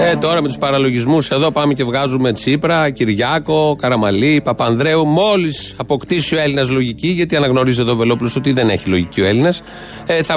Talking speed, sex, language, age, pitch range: 180 wpm, male, Greek, 40-59, 125-160 Hz